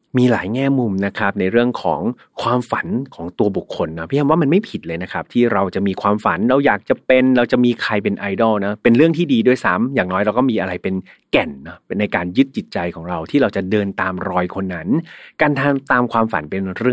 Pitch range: 95-125 Hz